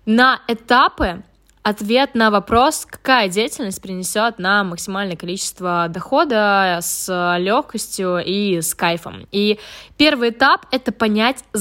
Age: 20-39